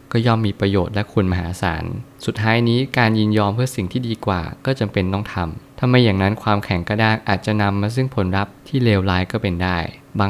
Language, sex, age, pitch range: Thai, male, 20-39, 95-120 Hz